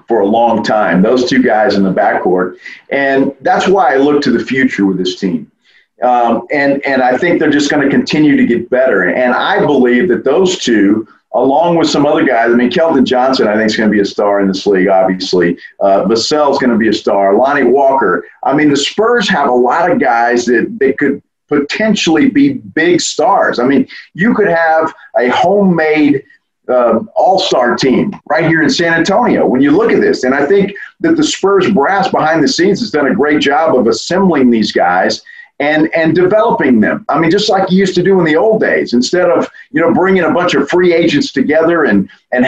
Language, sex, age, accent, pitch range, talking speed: English, male, 40-59, American, 125-190 Hz, 220 wpm